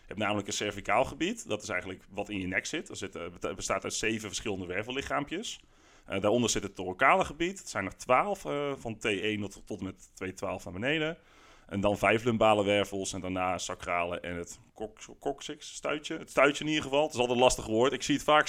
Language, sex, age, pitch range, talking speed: Dutch, male, 30-49, 100-125 Hz, 225 wpm